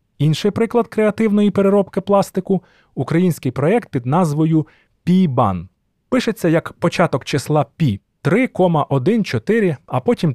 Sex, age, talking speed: male, 30-49, 115 wpm